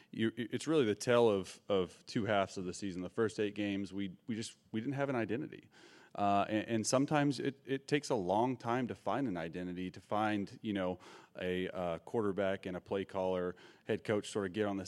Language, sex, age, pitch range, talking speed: English, male, 30-49, 95-110 Hz, 220 wpm